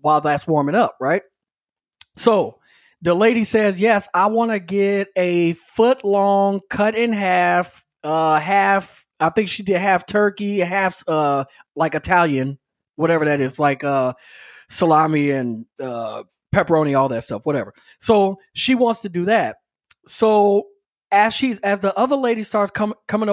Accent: American